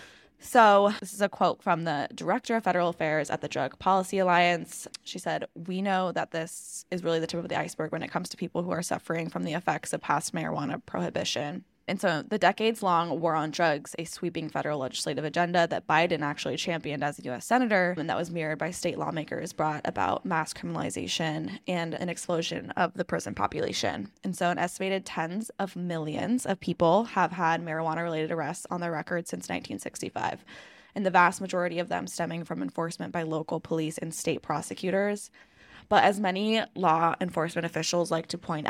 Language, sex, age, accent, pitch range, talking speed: English, female, 10-29, American, 160-185 Hz, 190 wpm